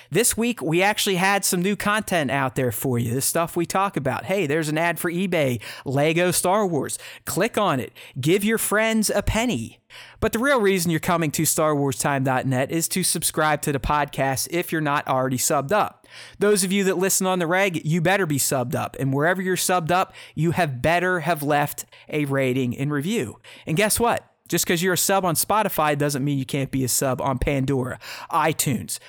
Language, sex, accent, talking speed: English, male, American, 210 wpm